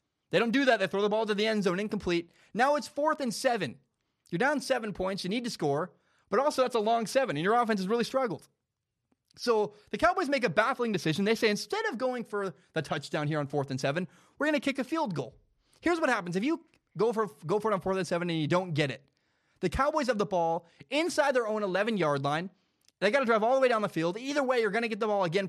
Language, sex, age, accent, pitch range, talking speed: English, male, 20-39, American, 160-235 Hz, 265 wpm